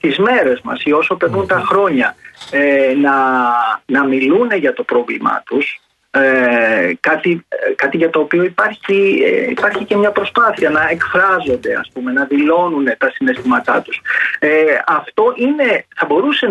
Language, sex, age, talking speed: Greek, male, 30-49, 155 wpm